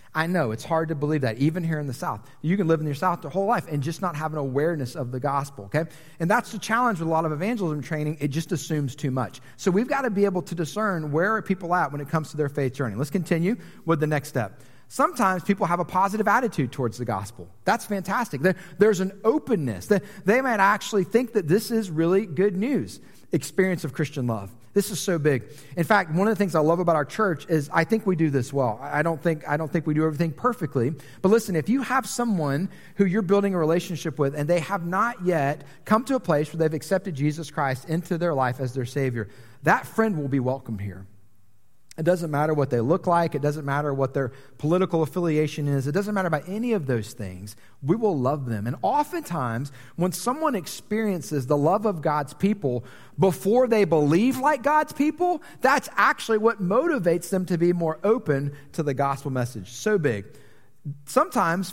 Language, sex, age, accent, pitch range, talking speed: English, male, 30-49, American, 140-200 Hz, 220 wpm